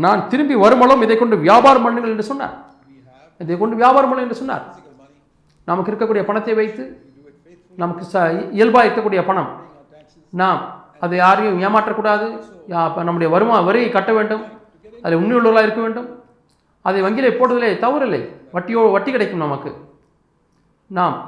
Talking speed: 135 wpm